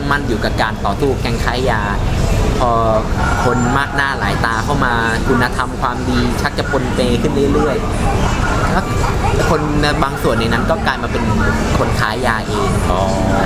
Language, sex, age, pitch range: Thai, male, 20-39, 105-130 Hz